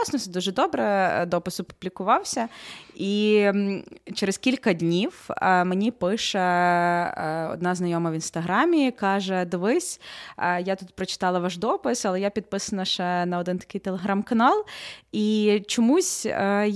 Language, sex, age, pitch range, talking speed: Ukrainian, female, 20-39, 175-210 Hz, 110 wpm